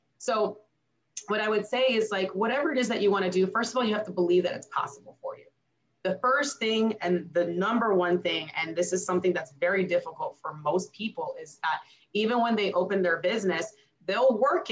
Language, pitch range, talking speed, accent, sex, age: English, 185-250 Hz, 225 wpm, American, female, 30-49